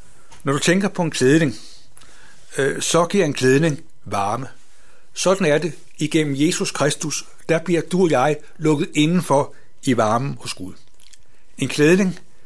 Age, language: 60-79, Danish